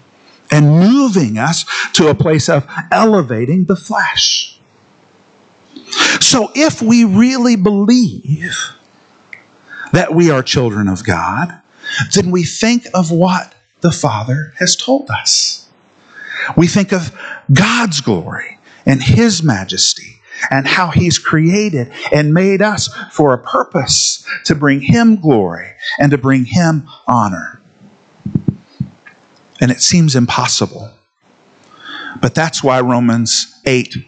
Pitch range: 125-185 Hz